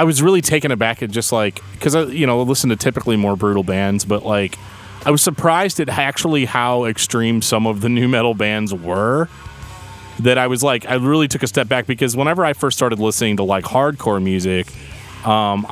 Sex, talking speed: male, 210 wpm